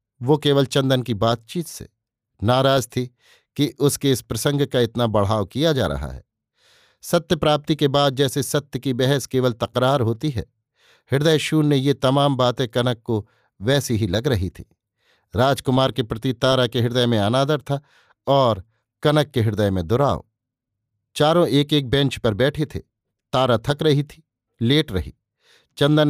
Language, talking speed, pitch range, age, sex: Hindi, 165 wpm, 115-145 Hz, 50-69, male